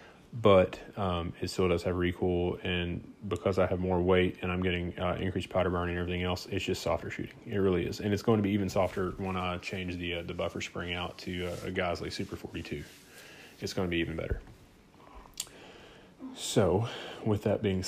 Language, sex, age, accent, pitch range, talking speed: English, male, 30-49, American, 90-95 Hz, 210 wpm